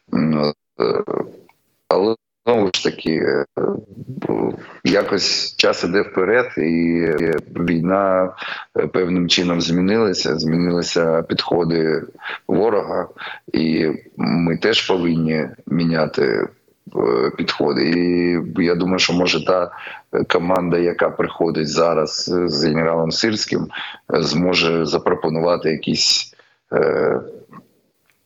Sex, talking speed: male, 85 wpm